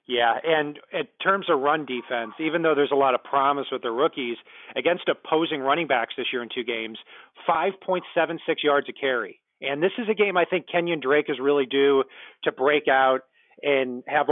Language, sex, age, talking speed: English, male, 40-59, 195 wpm